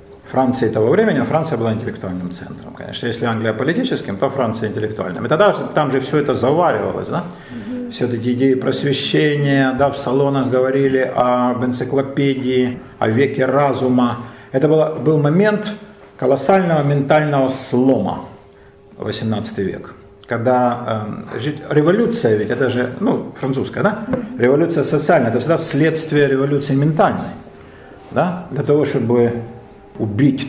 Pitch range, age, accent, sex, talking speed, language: 125-165 Hz, 50-69, native, male, 125 wpm, Russian